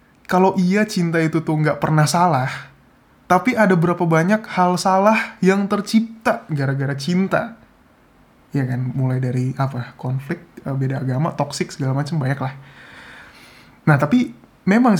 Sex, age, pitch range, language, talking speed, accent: male, 20-39, 135-180 Hz, Indonesian, 135 wpm, native